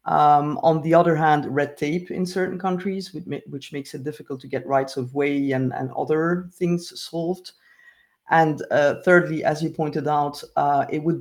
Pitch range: 140-170 Hz